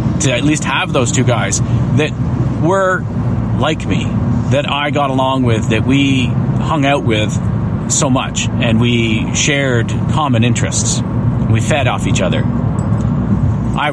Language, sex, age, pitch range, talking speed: English, male, 40-59, 115-140 Hz, 150 wpm